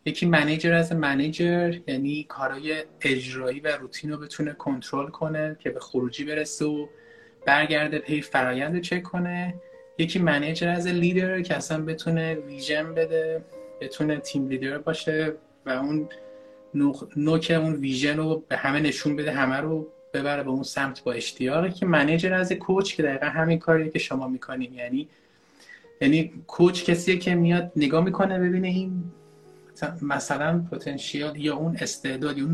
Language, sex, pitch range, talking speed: Persian, male, 150-180 Hz, 155 wpm